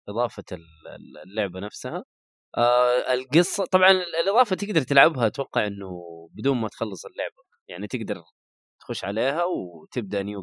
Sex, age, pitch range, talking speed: male, 20-39, 100-140 Hz, 120 wpm